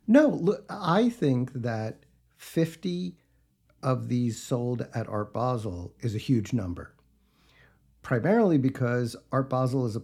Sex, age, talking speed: male, 50-69, 125 wpm